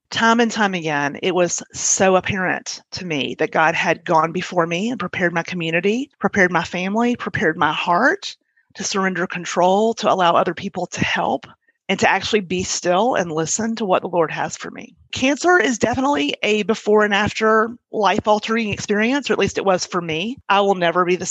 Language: English